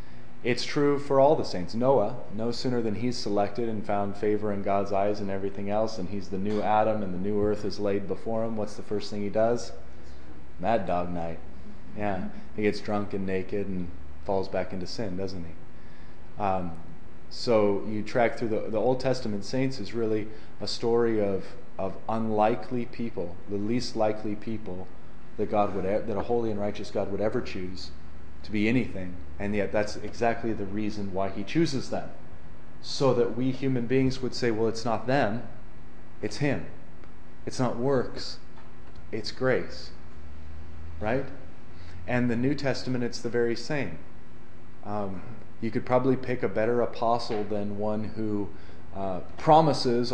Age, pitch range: 30-49, 95-120 Hz